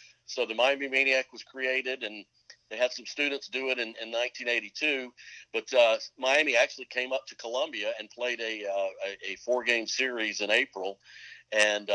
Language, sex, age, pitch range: English, male, 50-69, 110-130 Hz